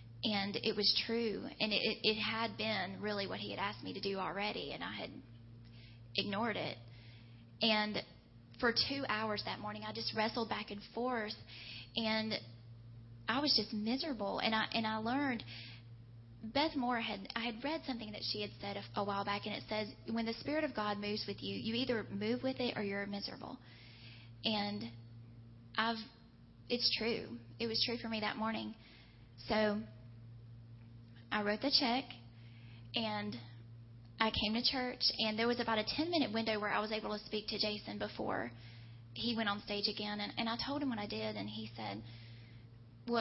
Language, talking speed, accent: English, 185 wpm, American